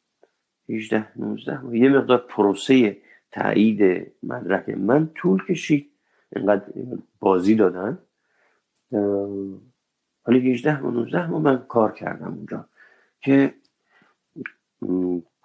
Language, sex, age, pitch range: Persian, male, 50-69, 95-130 Hz